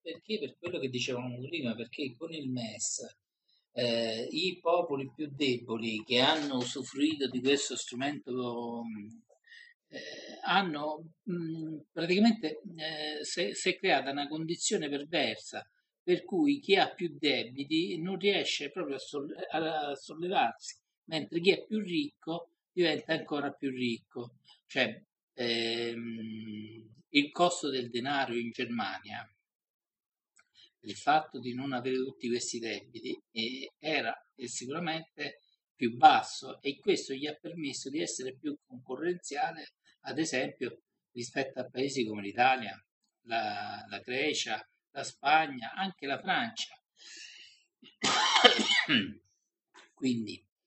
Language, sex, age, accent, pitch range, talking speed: Italian, male, 50-69, native, 125-165 Hz, 115 wpm